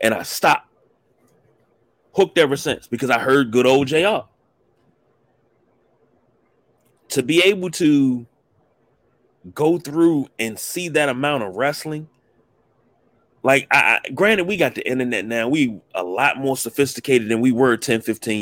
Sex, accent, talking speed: male, American, 135 wpm